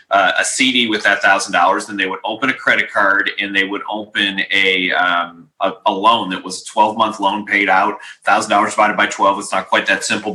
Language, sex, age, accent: English, male, 30-49, American